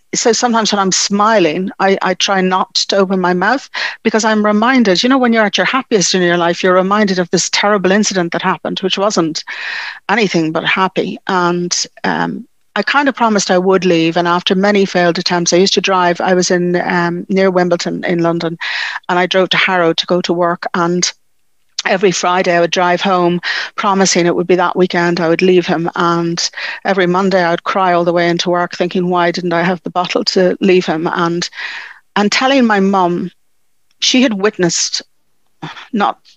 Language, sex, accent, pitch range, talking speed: English, female, British, 170-195 Hz, 200 wpm